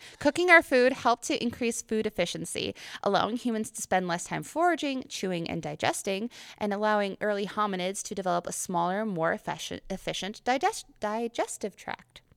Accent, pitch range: American, 175-245 Hz